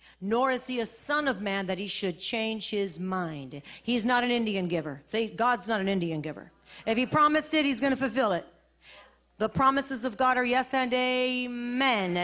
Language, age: English, 40-59